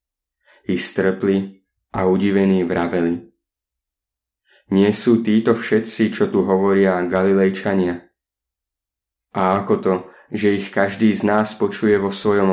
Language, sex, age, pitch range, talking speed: Slovak, male, 20-39, 90-100 Hz, 115 wpm